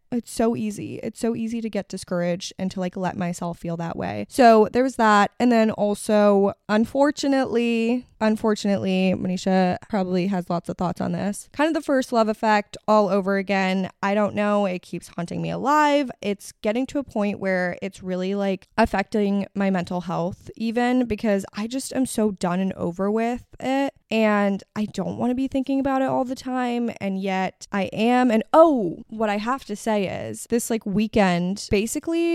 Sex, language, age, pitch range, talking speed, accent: female, English, 10-29, 185-230 Hz, 190 wpm, American